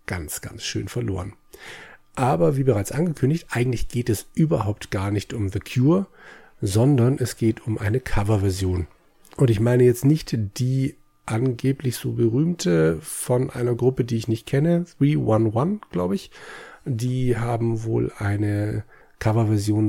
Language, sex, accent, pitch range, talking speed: German, male, German, 105-130 Hz, 140 wpm